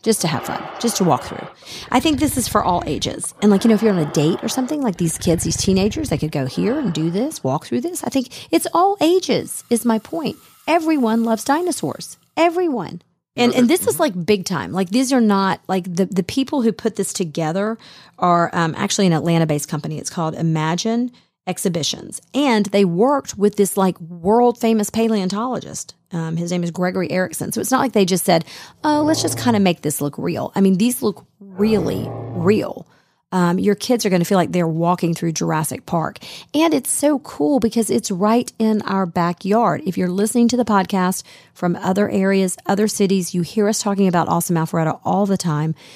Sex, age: female, 40-59